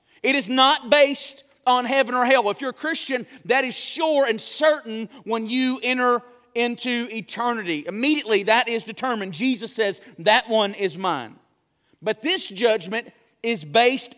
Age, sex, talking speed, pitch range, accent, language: 40-59, male, 155 wpm, 220-270 Hz, American, English